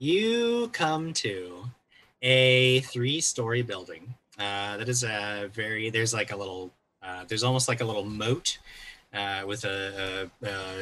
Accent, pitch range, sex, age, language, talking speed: American, 105-125 Hz, male, 30-49, English, 150 wpm